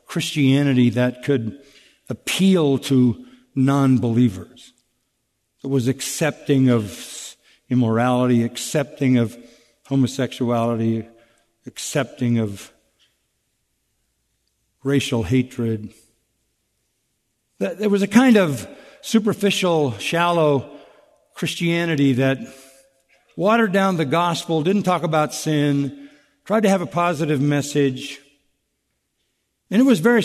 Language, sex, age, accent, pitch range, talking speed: English, male, 60-79, American, 135-195 Hz, 90 wpm